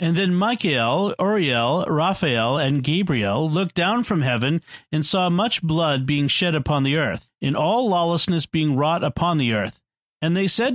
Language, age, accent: English, 40-59, American